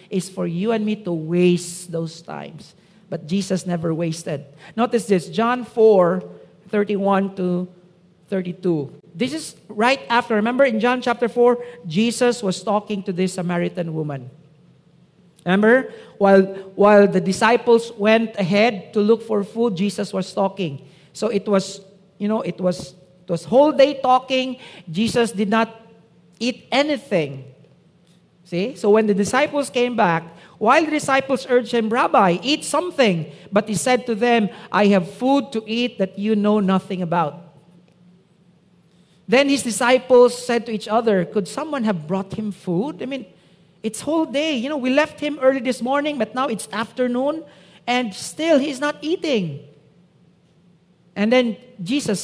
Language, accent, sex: English, Filipino, male